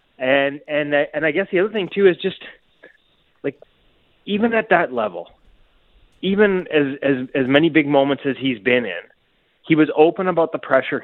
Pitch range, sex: 135-195 Hz, male